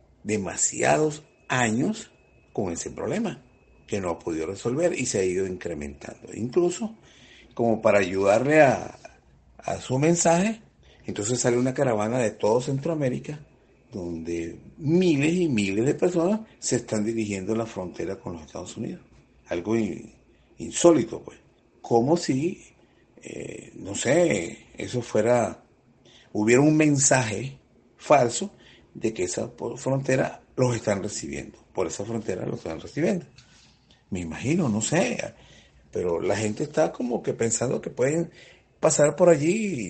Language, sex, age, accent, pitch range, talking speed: Spanish, male, 60-79, Venezuelan, 100-140 Hz, 135 wpm